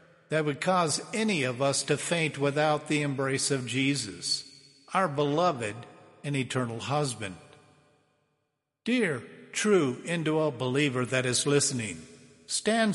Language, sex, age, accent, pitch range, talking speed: English, male, 50-69, American, 135-175 Hz, 120 wpm